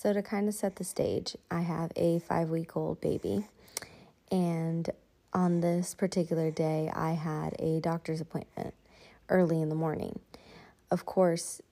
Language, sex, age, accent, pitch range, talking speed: English, female, 20-39, American, 155-175 Hz, 145 wpm